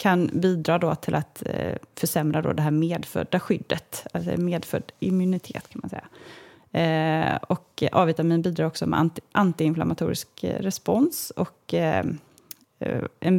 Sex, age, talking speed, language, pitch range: female, 30-49, 135 wpm, Swedish, 160-195 Hz